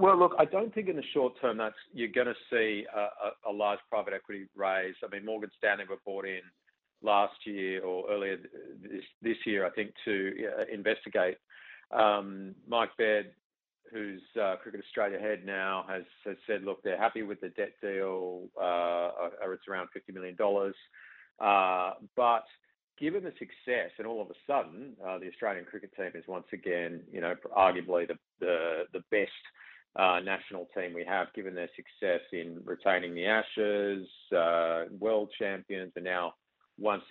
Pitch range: 90-105 Hz